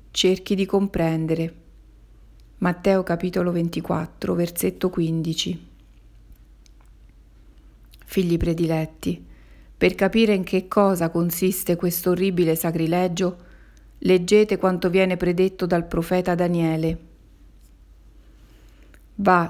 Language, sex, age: Italian, female, 40-59